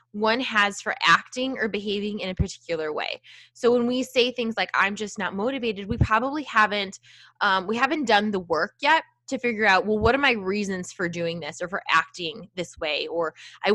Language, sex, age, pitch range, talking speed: English, female, 20-39, 175-235 Hz, 210 wpm